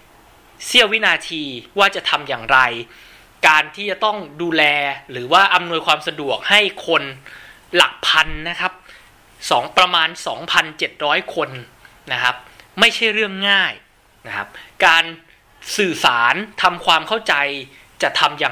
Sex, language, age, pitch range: male, Thai, 20-39, 145-200 Hz